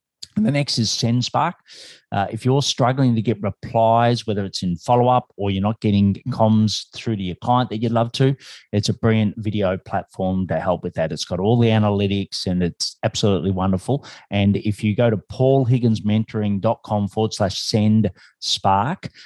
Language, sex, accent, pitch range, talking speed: English, male, Australian, 100-120 Hz, 180 wpm